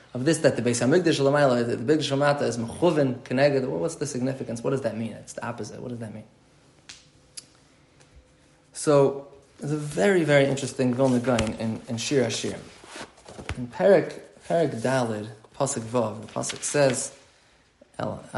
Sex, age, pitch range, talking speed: male, 20-39, 125-160 Hz, 155 wpm